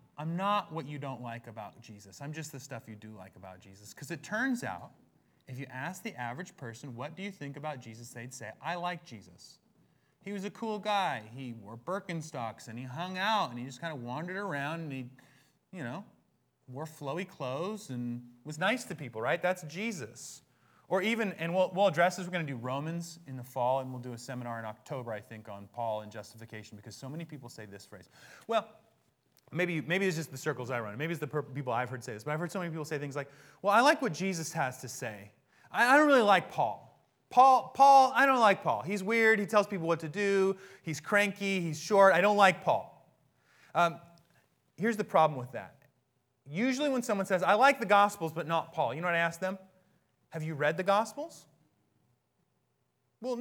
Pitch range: 125-195 Hz